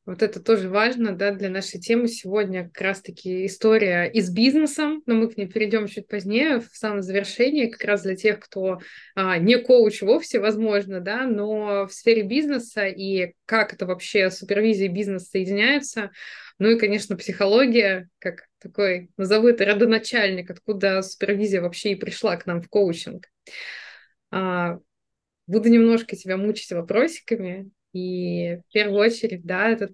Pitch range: 195-225 Hz